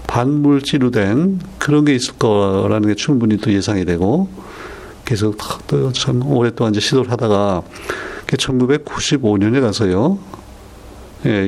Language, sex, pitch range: Korean, male, 95-125 Hz